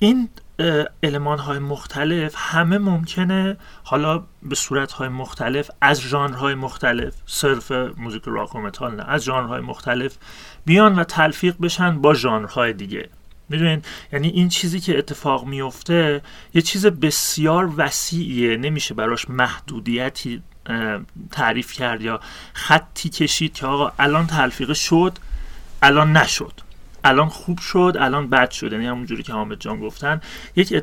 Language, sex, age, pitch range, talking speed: Persian, male, 30-49, 130-175 Hz, 130 wpm